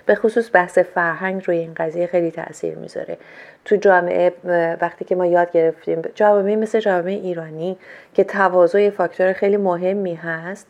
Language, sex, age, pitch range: Persian, female, 40-59, 175-215 Hz